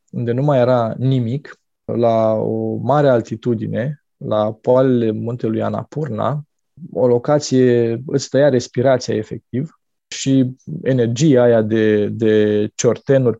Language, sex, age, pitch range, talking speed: Romanian, male, 20-39, 115-150 Hz, 105 wpm